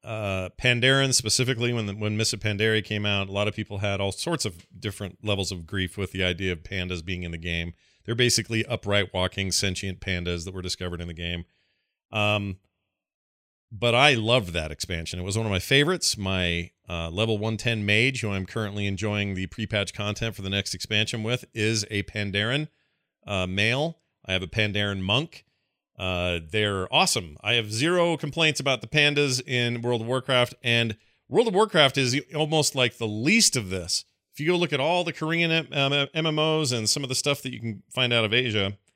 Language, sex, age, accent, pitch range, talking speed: English, male, 40-59, American, 100-140 Hz, 200 wpm